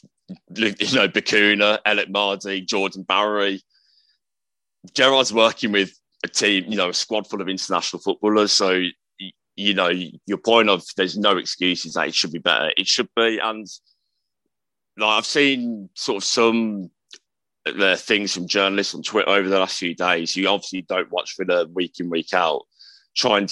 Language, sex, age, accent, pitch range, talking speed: English, male, 30-49, British, 95-115 Hz, 170 wpm